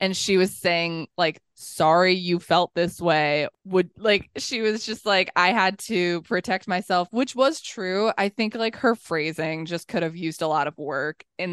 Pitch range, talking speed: 175-210 Hz, 200 wpm